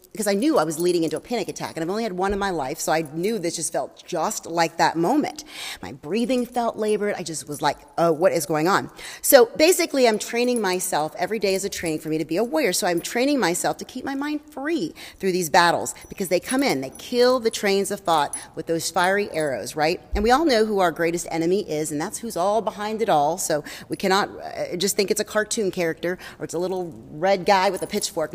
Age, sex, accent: 30-49, female, American